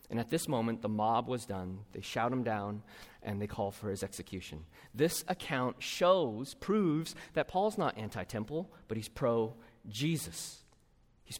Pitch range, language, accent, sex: 110-155 Hz, English, American, male